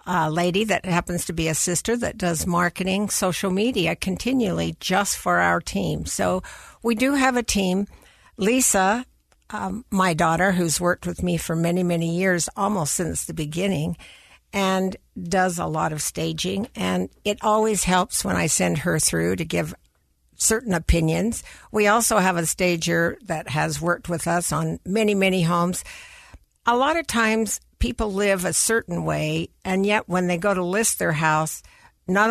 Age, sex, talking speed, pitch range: 60-79, female, 170 wpm, 165-200 Hz